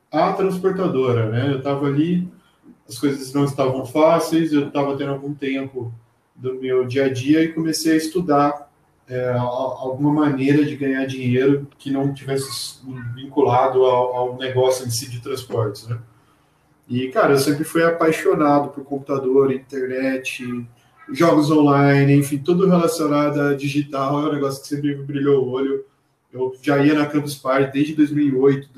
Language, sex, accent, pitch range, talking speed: Portuguese, male, Brazilian, 130-150 Hz, 155 wpm